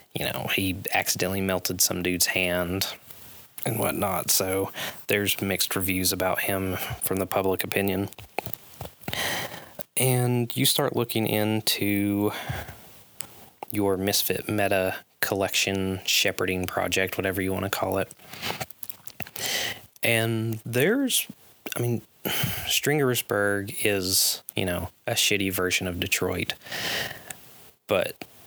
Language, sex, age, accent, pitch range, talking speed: English, male, 20-39, American, 90-105 Hz, 105 wpm